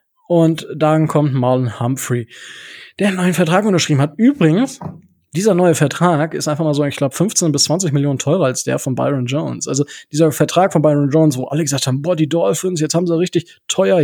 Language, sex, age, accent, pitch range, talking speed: German, male, 20-39, German, 140-180 Hz, 210 wpm